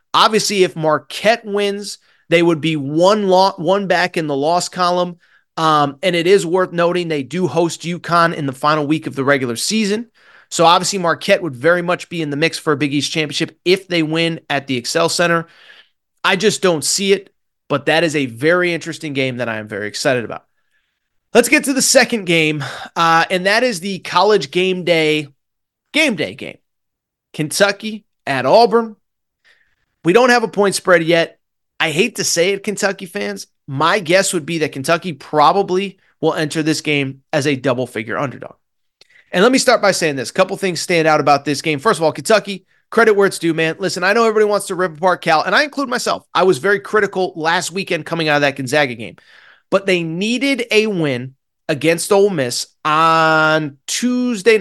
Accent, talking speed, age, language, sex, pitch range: American, 200 wpm, 30-49, English, male, 155-195 Hz